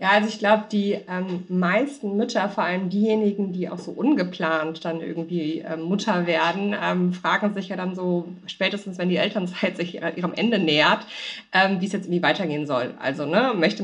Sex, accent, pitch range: female, German, 175-215 Hz